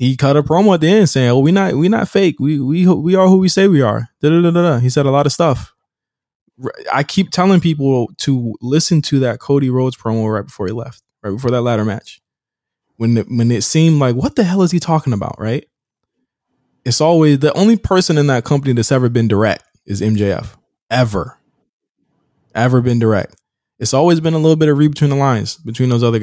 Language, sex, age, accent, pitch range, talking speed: English, male, 20-39, American, 120-155 Hz, 220 wpm